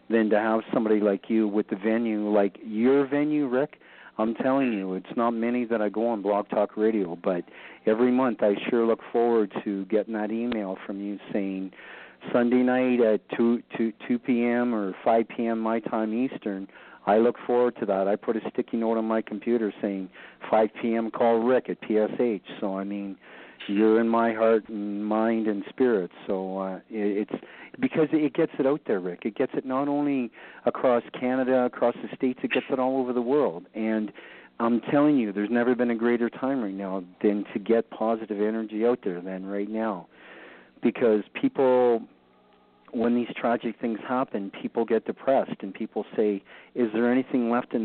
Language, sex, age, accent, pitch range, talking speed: English, male, 50-69, American, 105-120 Hz, 190 wpm